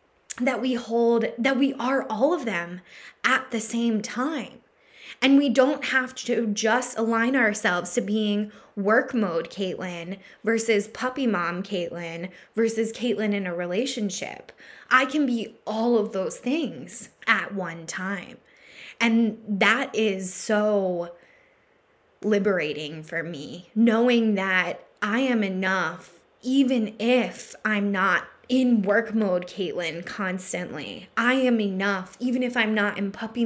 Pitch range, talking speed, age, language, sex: 190-240 Hz, 135 wpm, 10-29, English, female